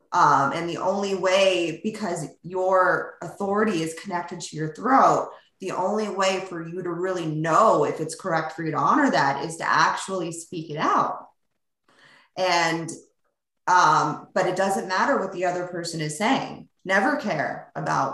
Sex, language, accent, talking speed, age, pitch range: female, English, American, 165 wpm, 20-39, 160-195 Hz